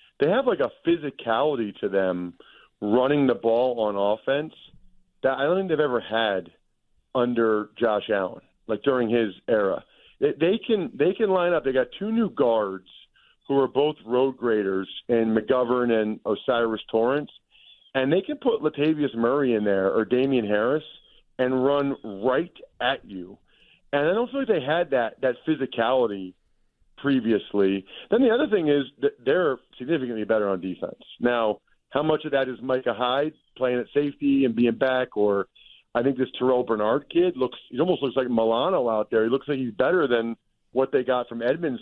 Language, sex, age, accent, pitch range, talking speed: English, male, 40-59, American, 115-145 Hz, 180 wpm